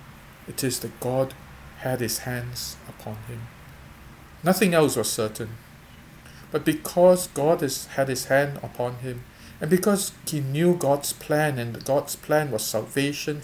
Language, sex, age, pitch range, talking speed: English, male, 50-69, 115-145 Hz, 145 wpm